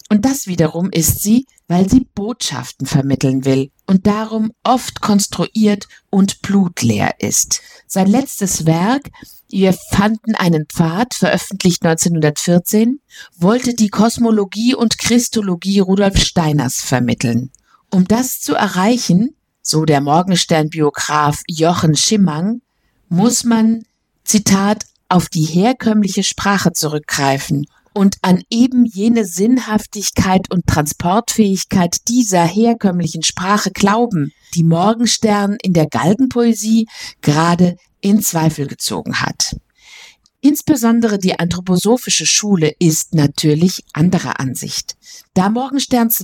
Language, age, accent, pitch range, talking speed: German, 50-69, German, 170-225 Hz, 105 wpm